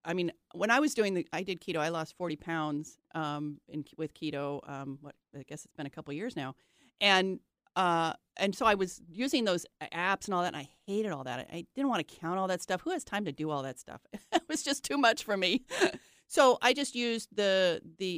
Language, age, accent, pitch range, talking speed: English, 30-49, American, 150-190 Hz, 250 wpm